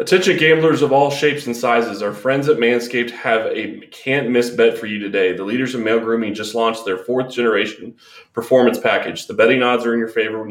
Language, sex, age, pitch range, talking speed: English, male, 20-39, 110-130 Hz, 210 wpm